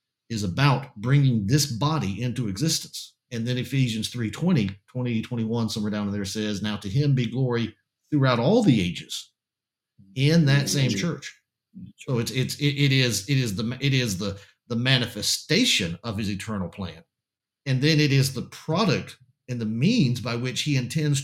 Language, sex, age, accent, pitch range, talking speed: English, male, 50-69, American, 110-140 Hz, 175 wpm